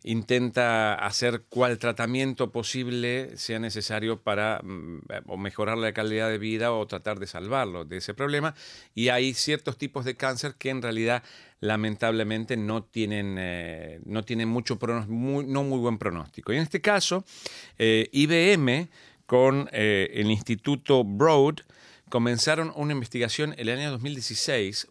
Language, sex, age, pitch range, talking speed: Spanish, male, 40-59, 110-140 Hz, 140 wpm